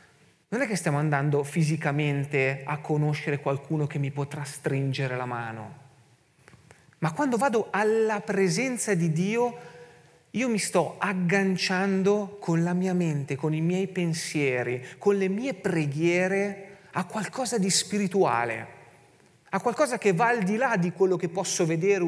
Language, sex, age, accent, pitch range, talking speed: Italian, male, 30-49, native, 145-190 Hz, 145 wpm